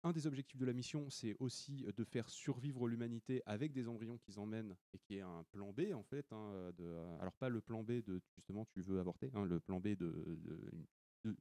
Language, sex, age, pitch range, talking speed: French, male, 30-49, 100-140 Hz, 230 wpm